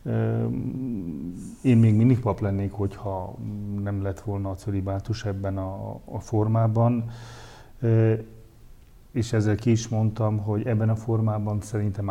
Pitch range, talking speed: 100-115 Hz, 120 wpm